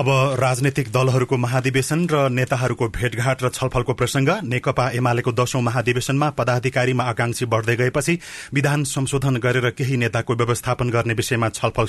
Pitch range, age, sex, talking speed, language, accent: 120-140 Hz, 30-49, male, 175 wpm, English, Indian